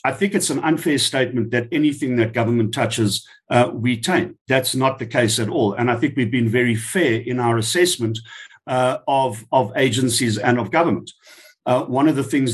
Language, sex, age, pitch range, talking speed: English, male, 50-69, 115-140 Hz, 200 wpm